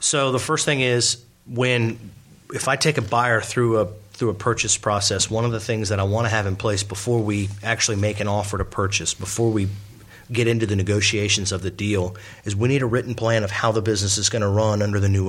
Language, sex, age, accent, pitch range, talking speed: English, male, 30-49, American, 100-120 Hz, 245 wpm